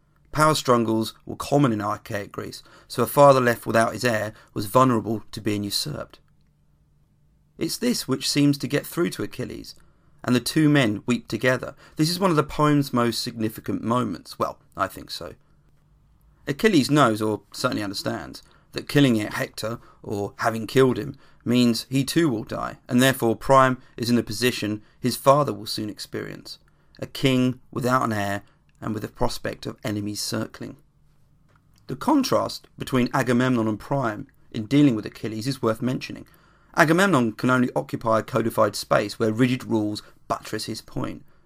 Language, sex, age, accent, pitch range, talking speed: English, male, 40-59, British, 110-135 Hz, 165 wpm